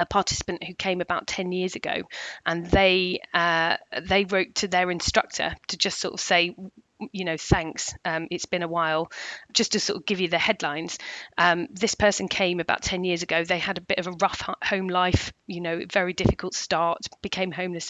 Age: 40-59